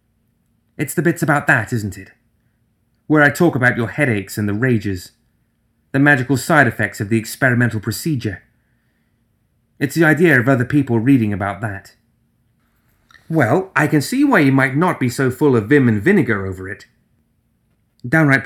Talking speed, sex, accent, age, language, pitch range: 165 wpm, male, British, 30-49, English, 110-150 Hz